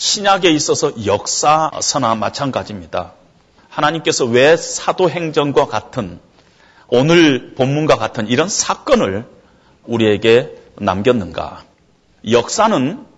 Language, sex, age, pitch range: Korean, male, 40-59, 155-220 Hz